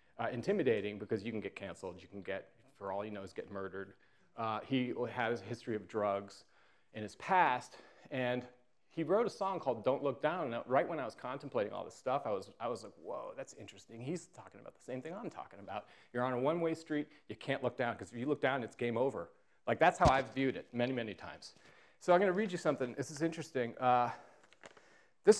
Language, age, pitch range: English, 40-59, 110-145 Hz